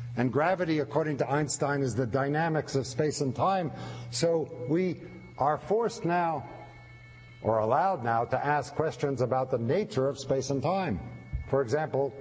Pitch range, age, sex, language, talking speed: 115-145 Hz, 60-79, male, English, 155 wpm